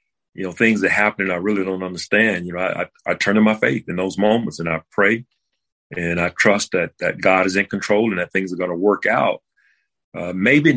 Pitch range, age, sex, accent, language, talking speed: 95-115 Hz, 40-59, male, American, English, 240 wpm